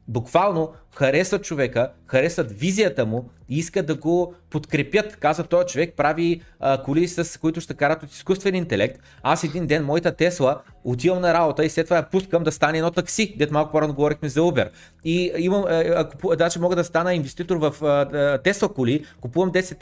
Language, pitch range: Bulgarian, 145-180 Hz